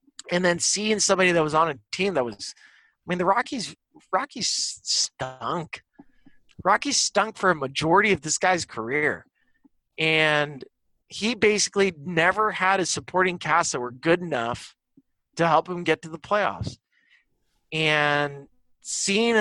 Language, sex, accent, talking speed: English, male, American, 145 wpm